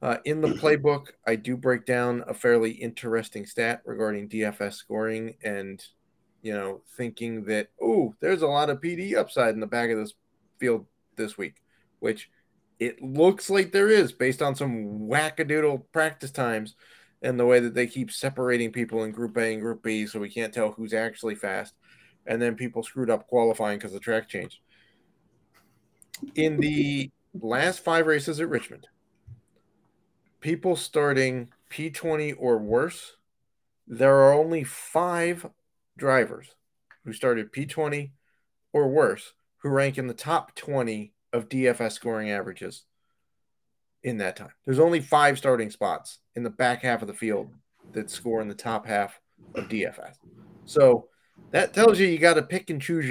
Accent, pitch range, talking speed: American, 115-150 Hz, 160 wpm